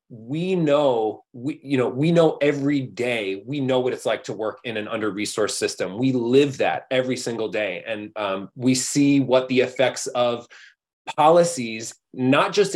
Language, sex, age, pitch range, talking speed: English, male, 30-49, 125-150 Hz, 170 wpm